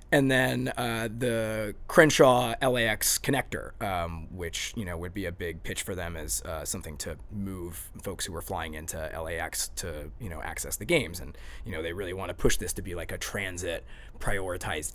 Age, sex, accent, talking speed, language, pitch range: 20-39, male, American, 200 wpm, English, 90-120 Hz